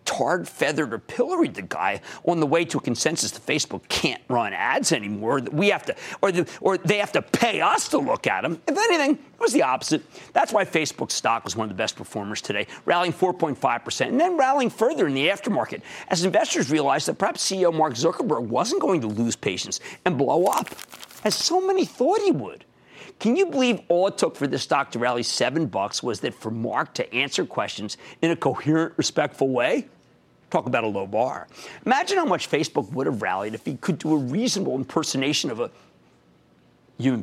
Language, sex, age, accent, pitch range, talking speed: English, male, 50-69, American, 130-215 Hz, 200 wpm